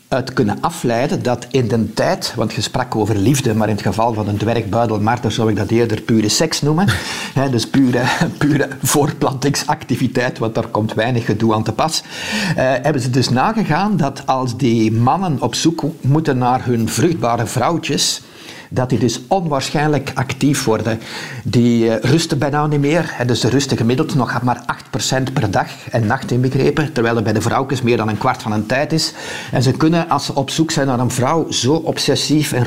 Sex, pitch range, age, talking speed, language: male, 115-140 Hz, 60-79, 200 wpm, Dutch